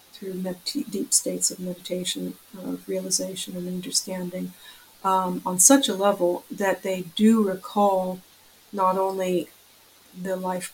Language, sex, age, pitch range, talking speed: English, female, 50-69, 185-210 Hz, 115 wpm